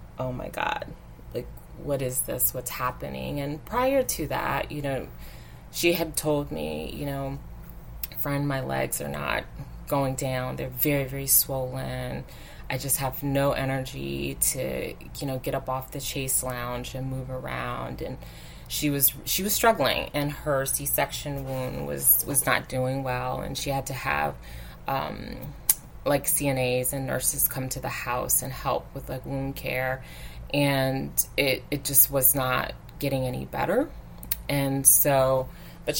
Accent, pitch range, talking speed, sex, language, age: American, 130-145 Hz, 160 wpm, female, English, 20-39